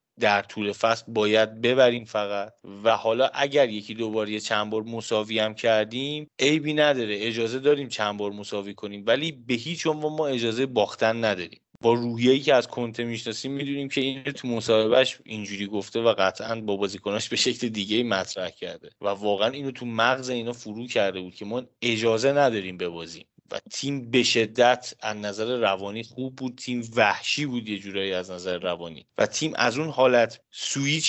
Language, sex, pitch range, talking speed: Persian, male, 105-130 Hz, 180 wpm